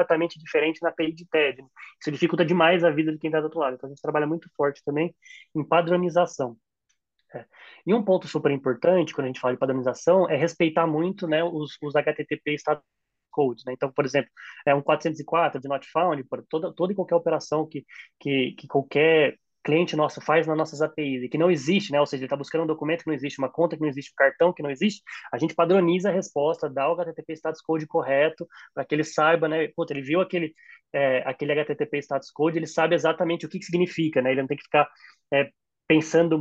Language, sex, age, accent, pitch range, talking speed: Portuguese, male, 20-39, Brazilian, 145-165 Hz, 230 wpm